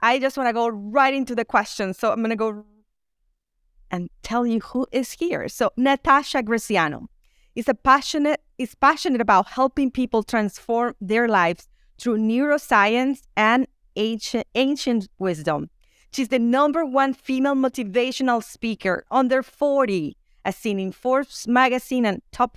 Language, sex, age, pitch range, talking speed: English, female, 30-49, 215-260 Hz, 140 wpm